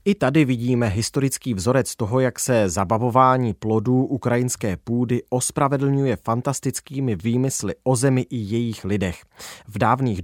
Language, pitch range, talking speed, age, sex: Czech, 105-135 Hz, 130 wpm, 30-49, male